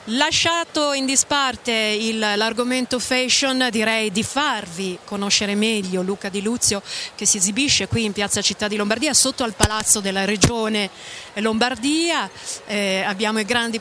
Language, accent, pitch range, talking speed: Italian, native, 200-230 Hz, 145 wpm